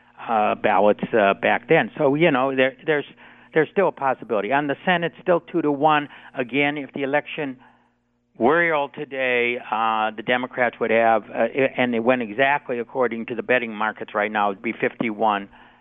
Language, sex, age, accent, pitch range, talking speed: English, male, 50-69, American, 115-150 Hz, 180 wpm